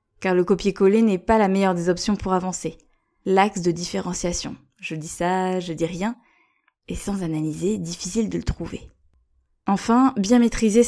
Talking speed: 165 wpm